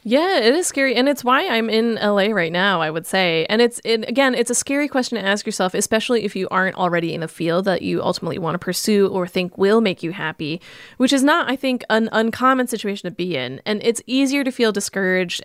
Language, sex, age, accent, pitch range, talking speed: English, female, 20-39, American, 180-225 Hz, 245 wpm